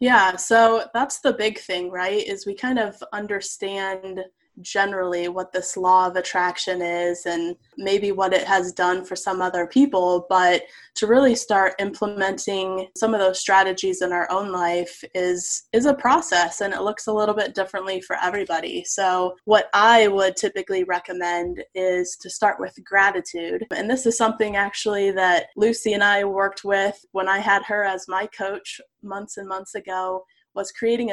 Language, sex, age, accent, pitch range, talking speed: English, female, 20-39, American, 185-210 Hz, 175 wpm